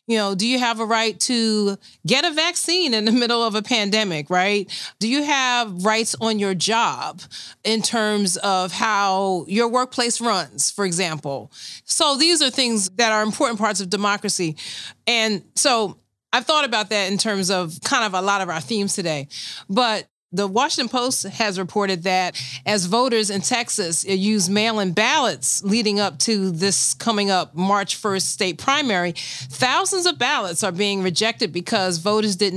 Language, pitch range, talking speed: English, 185-230 Hz, 175 wpm